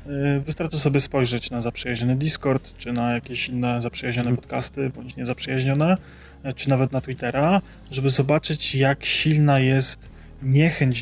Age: 20-39